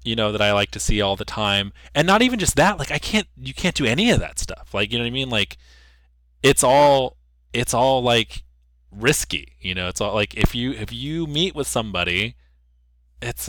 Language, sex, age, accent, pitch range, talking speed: English, male, 20-39, American, 90-135 Hz, 225 wpm